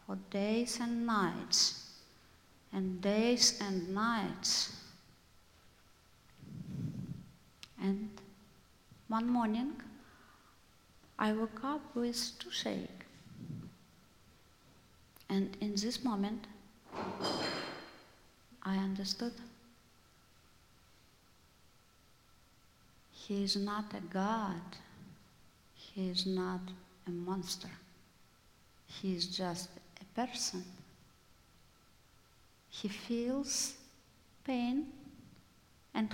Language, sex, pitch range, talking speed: English, female, 190-245 Hz, 70 wpm